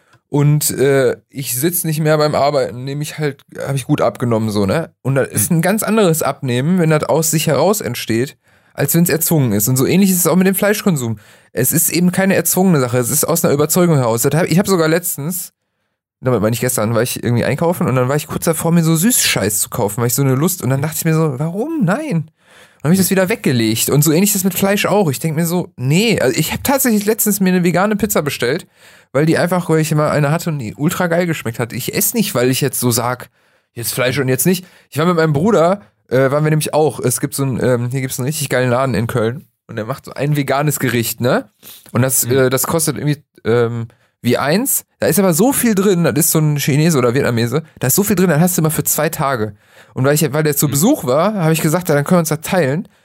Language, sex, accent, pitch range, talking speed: German, male, German, 125-175 Hz, 260 wpm